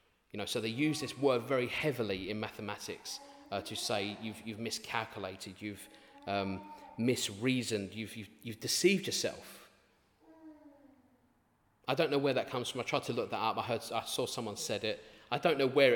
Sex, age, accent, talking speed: male, 30-49, British, 185 wpm